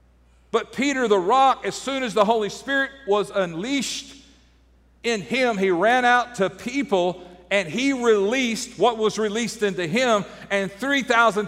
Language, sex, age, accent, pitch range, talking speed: English, male, 50-69, American, 175-230 Hz, 150 wpm